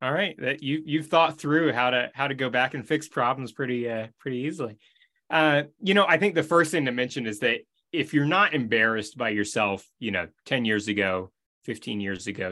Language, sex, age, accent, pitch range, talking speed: English, male, 30-49, American, 110-150 Hz, 220 wpm